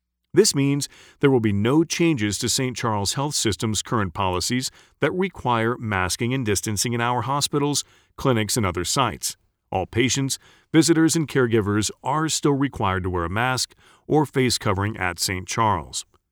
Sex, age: male, 40-59